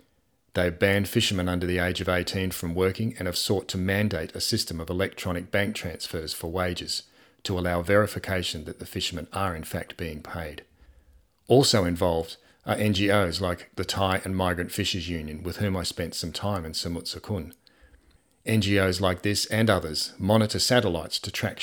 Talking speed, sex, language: 170 wpm, male, English